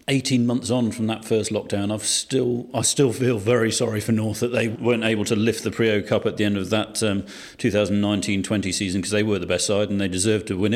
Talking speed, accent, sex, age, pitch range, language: 245 wpm, British, male, 40-59, 95-115 Hz, English